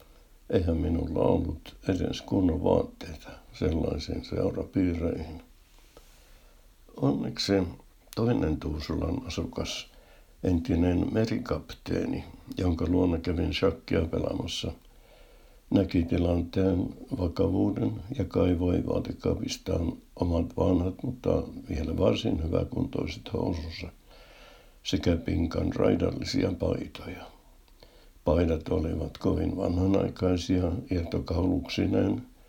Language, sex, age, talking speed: Finnish, male, 60-79, 75 wpm